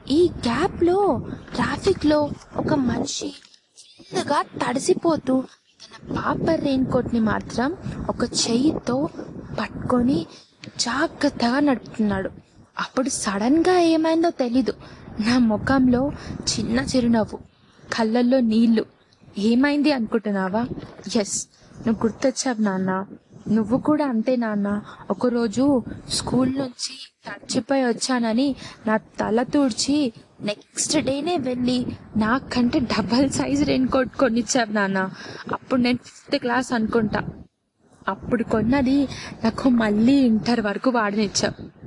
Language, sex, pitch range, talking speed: Telugu, female, 220-270 Hz, 100 wpm